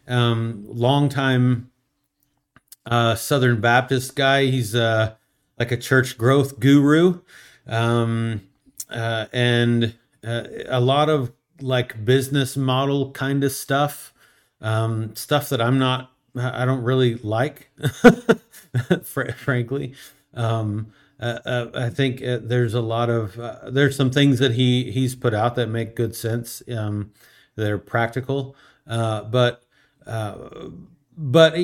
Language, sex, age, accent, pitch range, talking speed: English, male, 40-59, American, 115-140 Hz, 125 wpm